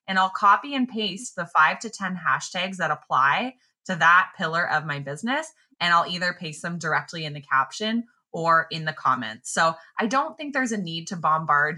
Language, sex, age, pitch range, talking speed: English, female, 20-39, 155-220 Hz, 205 wpm